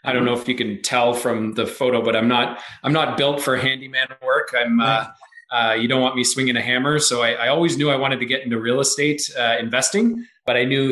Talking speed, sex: 255 wpm, male